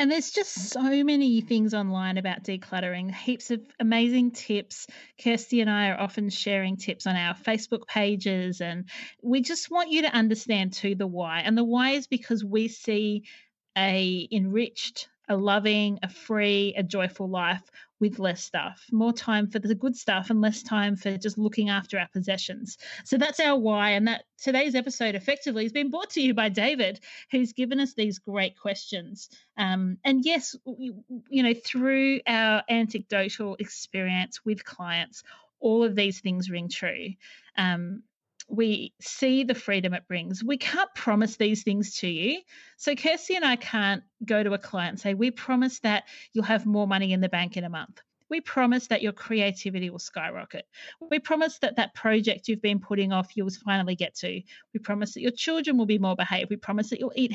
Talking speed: 185 wpm